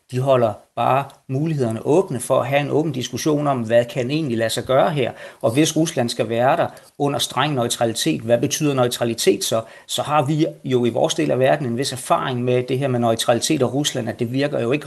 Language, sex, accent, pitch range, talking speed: Danish, male, native, 120-145 Hz, 225 wpm